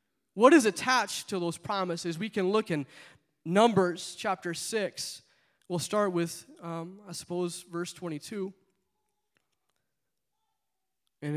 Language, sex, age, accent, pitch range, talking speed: English, male, 20-39, American, 165-205 Hz, 115 wpm